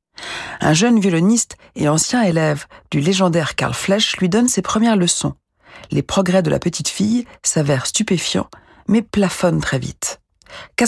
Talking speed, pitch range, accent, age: 155 wpm, 150-200 Hz, French, 50-69